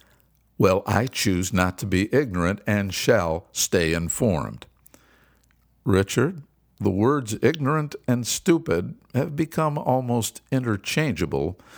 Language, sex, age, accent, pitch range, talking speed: English, male, 60-79, American, 90-125 Hz, 105 wpm